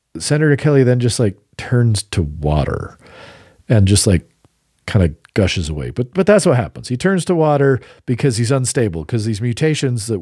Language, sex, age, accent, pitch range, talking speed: English, male, 40-59, American, 100-135 Hz, 180 wpm